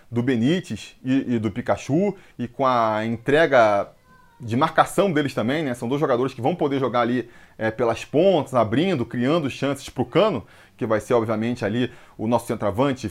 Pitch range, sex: 120-160 Hz, male